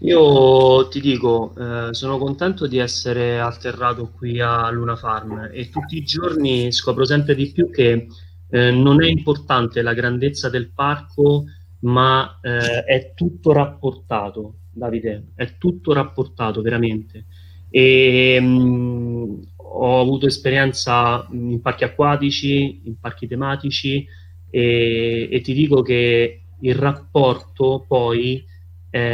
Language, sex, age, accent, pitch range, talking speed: Italian, male, 30-49, native, 115-140 Hz, 115 wpm